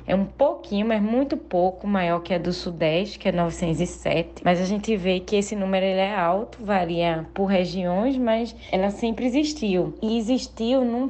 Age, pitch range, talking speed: 20-39, 175-210 Hz, 185 wpm